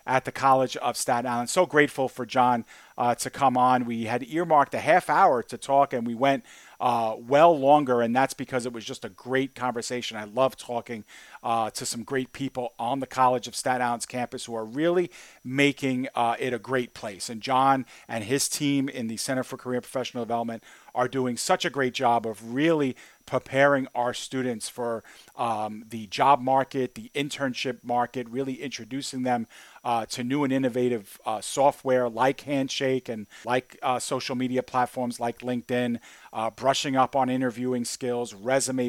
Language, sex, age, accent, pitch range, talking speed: English, male, 40-59, American, 120-135 Hz, 185 wpm